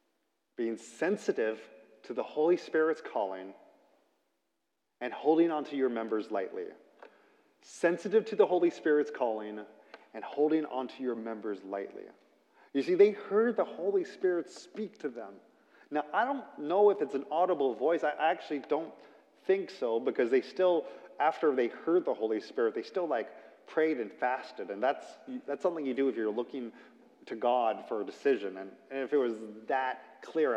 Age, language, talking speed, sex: 30-49, English, 170 wpm, male